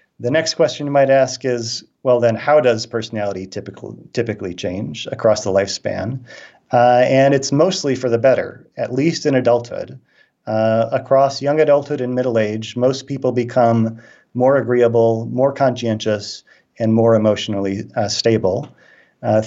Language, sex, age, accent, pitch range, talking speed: English, male, 40-59, American, 110-130 Hz, 150 wpm